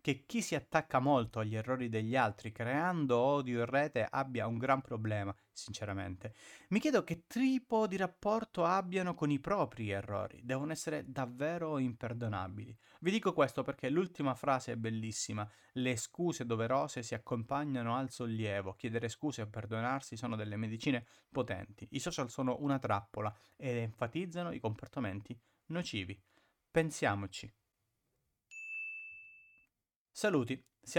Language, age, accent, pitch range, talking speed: Italian, 30-49, native, 110-150 Hz, 135 wpm